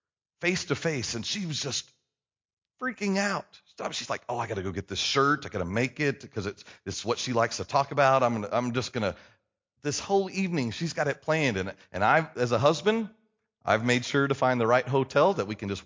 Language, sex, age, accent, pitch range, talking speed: English, male, 30-49, American, 110-155 Hz, 240 wpm